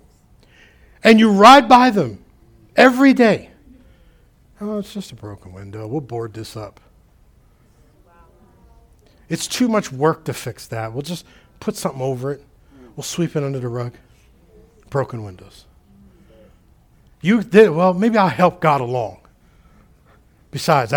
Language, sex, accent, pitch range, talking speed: English, male, American, 115-175 Hz, 135 wpm